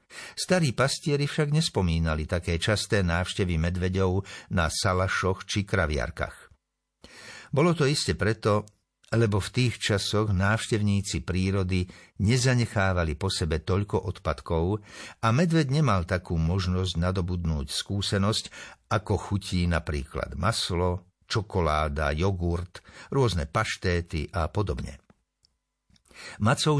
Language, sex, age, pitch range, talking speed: Slovak, male, 60-79, 90-110 Hz, 100 wpm